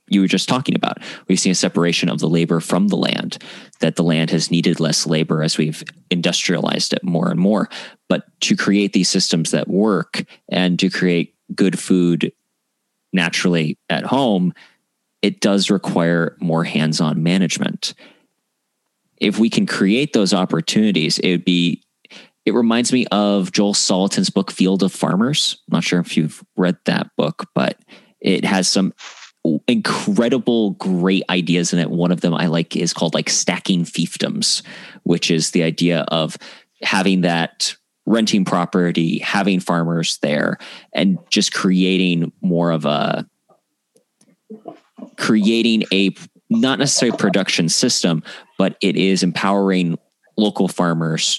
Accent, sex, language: American, male, English